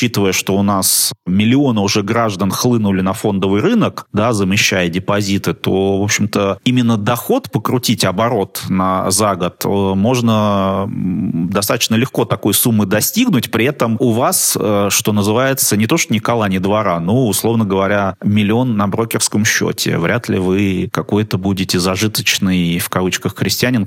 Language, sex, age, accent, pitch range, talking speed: Russian, male, 30-49, native, 95-125 Hz, 155 wpm